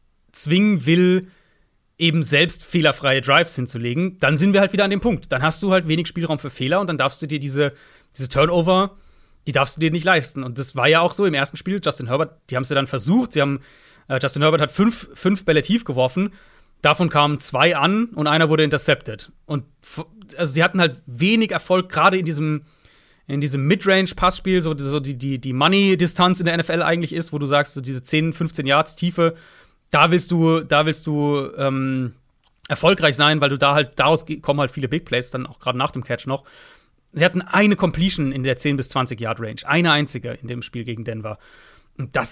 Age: 30-49